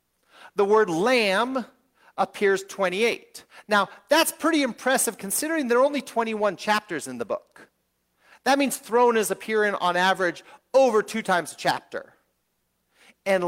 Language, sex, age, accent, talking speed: English, male, 40-59, American, 140 wpm